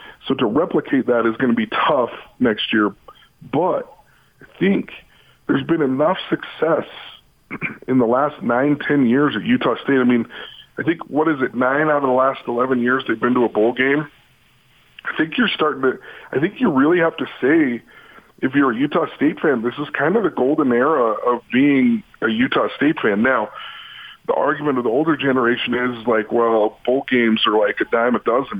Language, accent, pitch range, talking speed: English, American, 120-195 Hz, 200 wpm